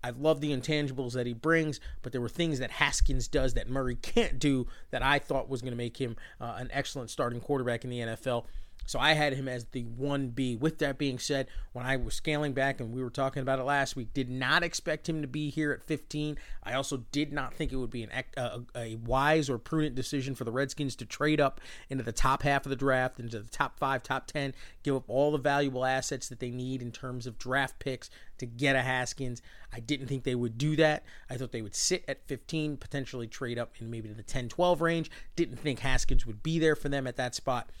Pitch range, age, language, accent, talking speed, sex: 125-150 Hz, 30-49, English, American, 240 wpm, male